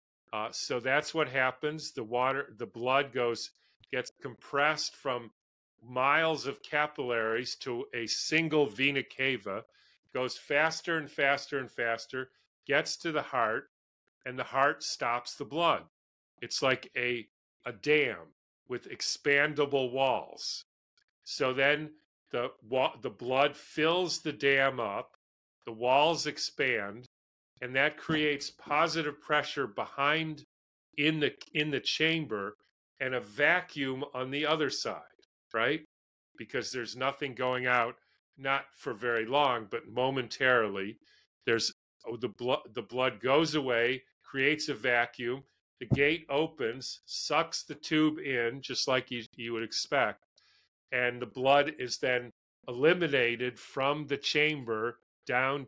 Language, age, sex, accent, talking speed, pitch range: English, 40-59, male, American, 130 wpm, 120-150 Hz